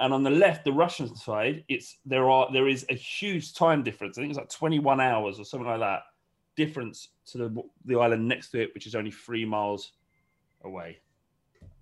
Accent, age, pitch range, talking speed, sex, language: British, 30-49, 110-150 Hz, 205 wpm, male, English